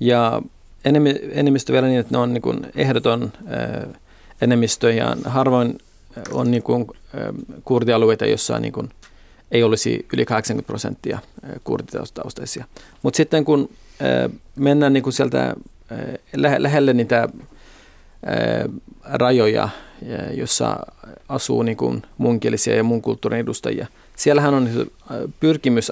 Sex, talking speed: male, 100 wpm